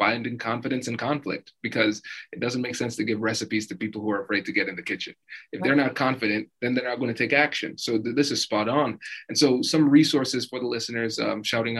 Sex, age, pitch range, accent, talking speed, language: male, 20-39, 110-125 Hz, American, 240 wpm, English